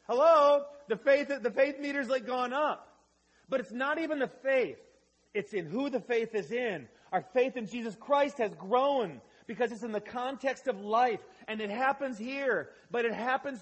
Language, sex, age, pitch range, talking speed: English, male, 40-59, 185-250 Hz, 190 wpm